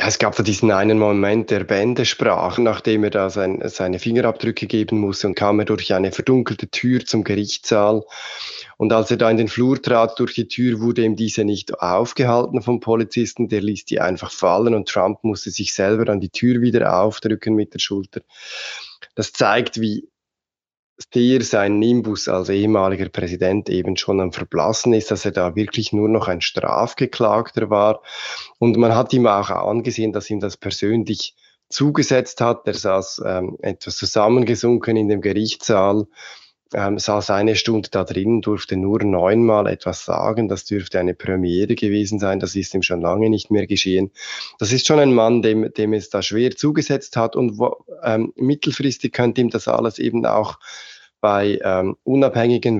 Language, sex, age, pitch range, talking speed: German, male, 20-39, 100-120 Hz, 175 wpm